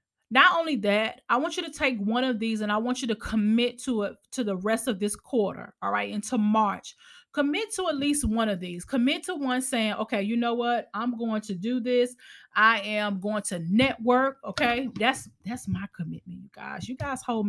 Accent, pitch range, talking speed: American, 200-250 Hz, 220 wpm